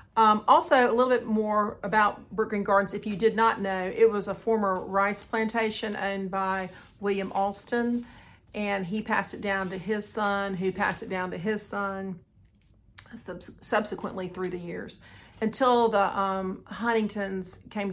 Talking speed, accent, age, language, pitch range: 160 wpm, American, 40-59, English, 195-225 Hz